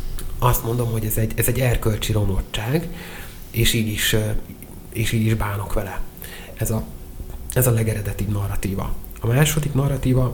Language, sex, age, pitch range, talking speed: Hungarian, male, 30-49, 110-125 Hz, 150 wpm